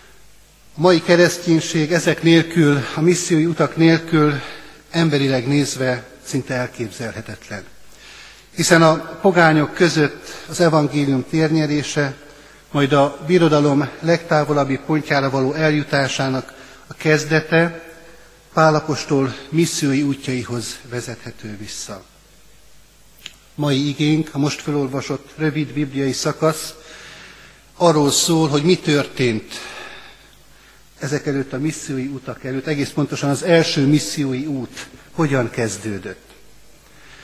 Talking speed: 100 wpm